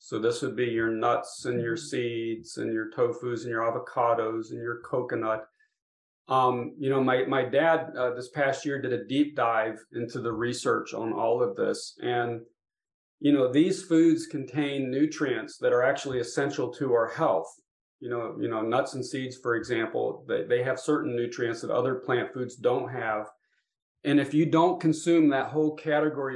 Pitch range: 125-155 Hz